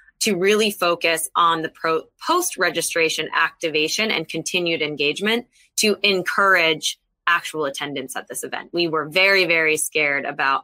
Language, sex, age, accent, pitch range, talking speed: English, female, 20-39, American, 155-195 Hz, 130 wpm